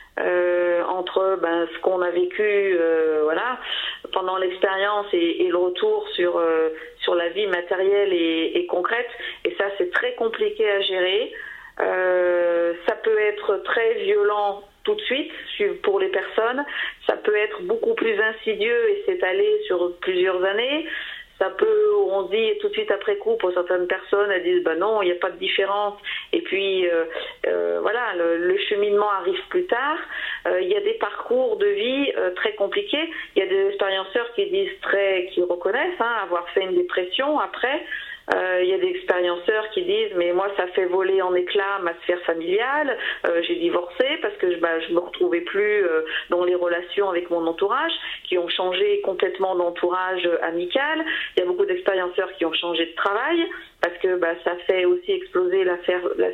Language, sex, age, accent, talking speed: French, female, 40-59, French, 190 wpm